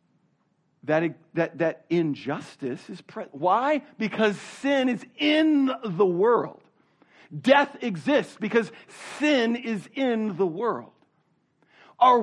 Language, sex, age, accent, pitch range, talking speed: English, male, 50-69, American, 165-245 Hz, 110 wpm